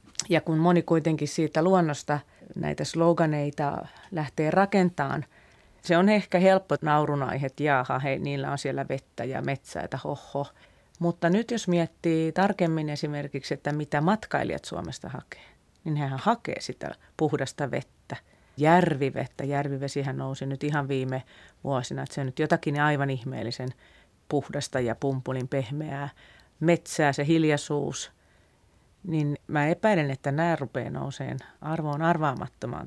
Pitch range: 135-165 Hz